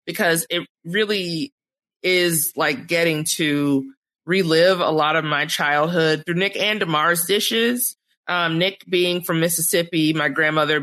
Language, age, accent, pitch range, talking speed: English, 30-49, American, 140-175 Hz, 140 wpm